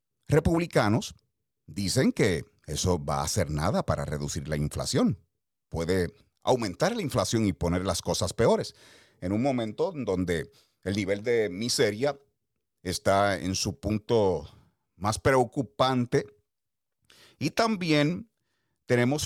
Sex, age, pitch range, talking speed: male, 40-59, 95-125 Hz, 120 wpm